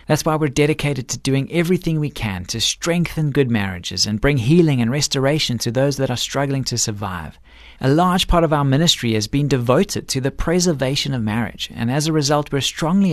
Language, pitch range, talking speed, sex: English, 110-155 Hz, 205 wpm, male